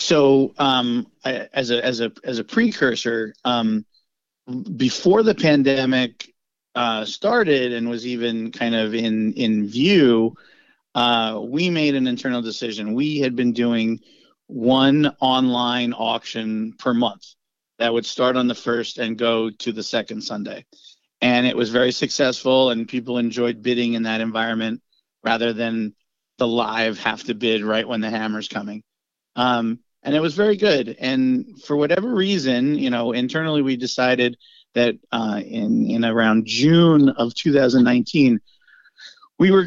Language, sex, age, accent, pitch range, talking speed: English, male, 40-59, American, 115-140 Hz, 150 wpm